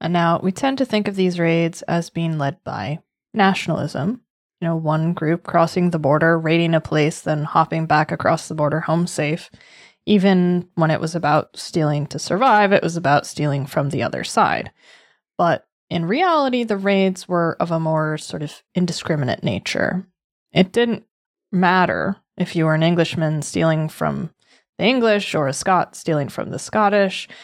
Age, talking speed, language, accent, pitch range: 20-39, 175 wpm, English, American, 160-210 Hz